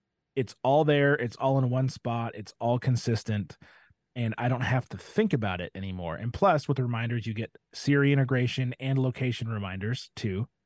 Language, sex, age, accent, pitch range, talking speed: English, male, 30-49, American, 115-150 Hz, 185 wpm